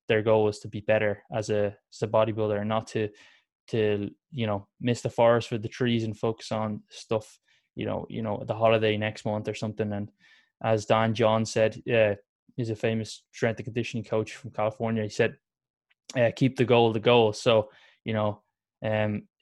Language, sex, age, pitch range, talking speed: English, male, 10-29, 110-120 Hz, 200 wpm